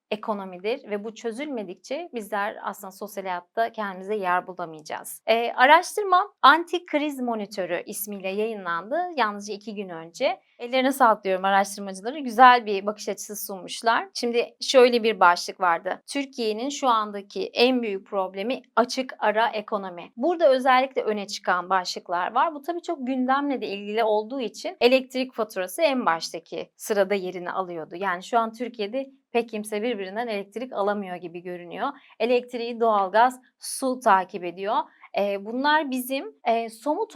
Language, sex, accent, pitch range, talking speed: Turkish, female, native, 205-265 Hz, 135 wpm